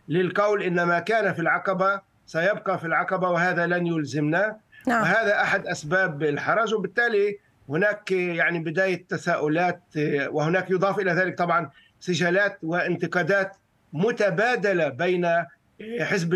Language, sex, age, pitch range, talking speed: Arabic, male, 50-69, 155-195 Hz, 115 wpm